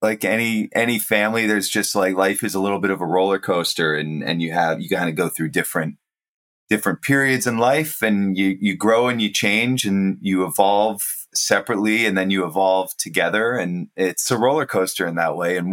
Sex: male